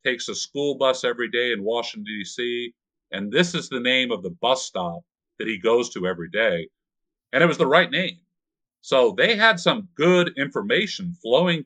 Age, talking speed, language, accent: 50-69, 190 wpm, English, American